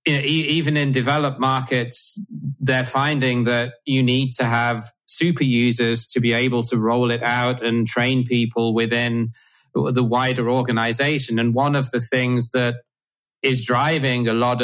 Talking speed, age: 160 wpm, 30-49